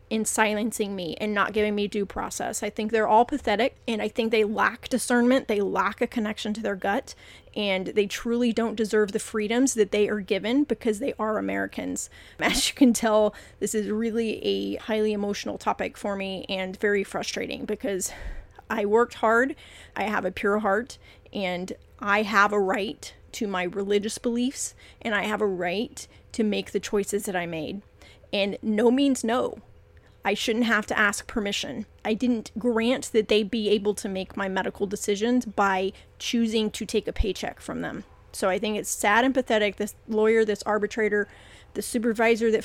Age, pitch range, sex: 30-49, 200-230 Hz, female